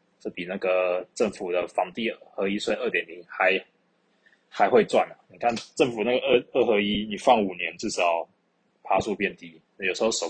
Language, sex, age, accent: Chinese, male, 20-39, native